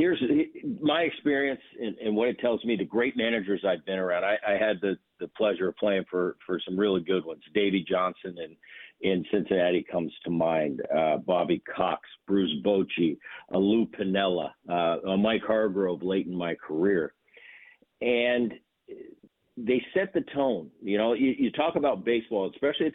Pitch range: 100-145 Hz